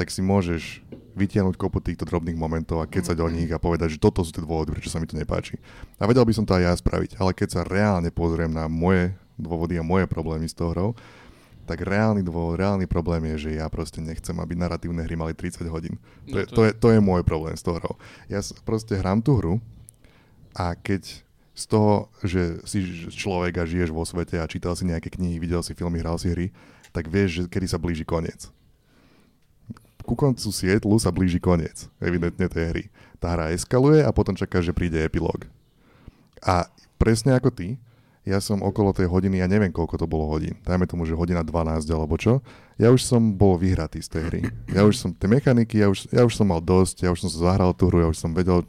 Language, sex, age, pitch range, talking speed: Slovak, male, 20-39, 85-105 Hz, 220 wpm